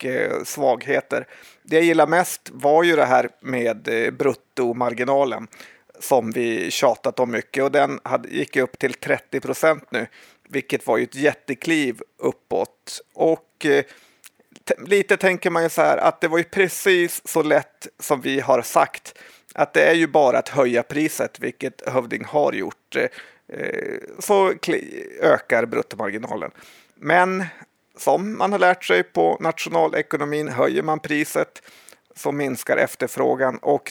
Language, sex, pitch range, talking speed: Swedish, male, 135-185 Hz, 135 wpm